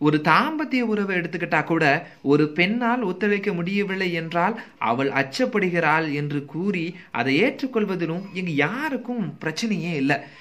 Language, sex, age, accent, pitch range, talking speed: Tamil, male, 30-49, native, 150-210 Hz, 110 wpm